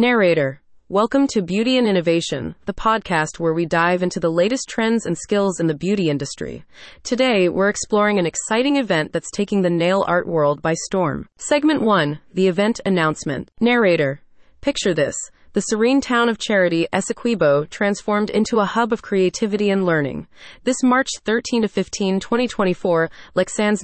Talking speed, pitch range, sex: 155 wpm, 170-230 Hz, female